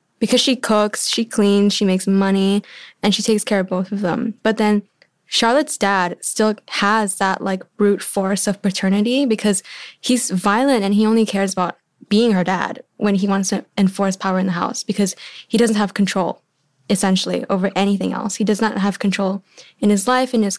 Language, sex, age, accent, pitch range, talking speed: English, female, 10-29, American, 190-220 Hz, 195 wpm